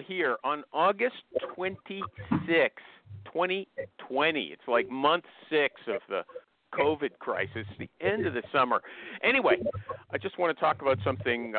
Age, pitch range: 50-69, 140-210 Hz